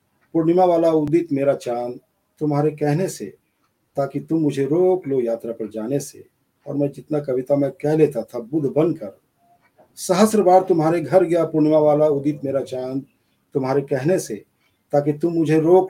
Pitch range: 140-180 Hz